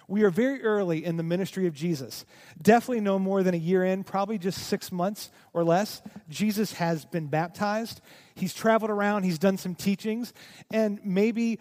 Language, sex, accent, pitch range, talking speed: English, male, American, 175-220 Hz, 180 wpm